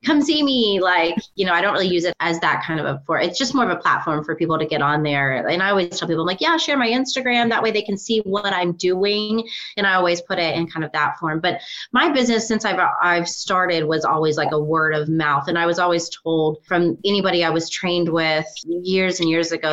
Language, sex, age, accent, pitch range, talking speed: English, female, 30-49, American, 160-195 Hz, 265 wpm